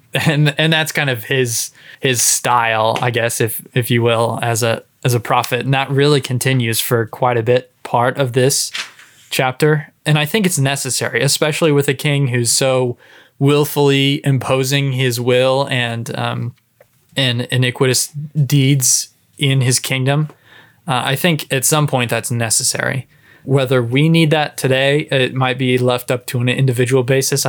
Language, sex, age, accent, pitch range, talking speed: English, male, 20-39, American, 120-140 Hz, 165 wpm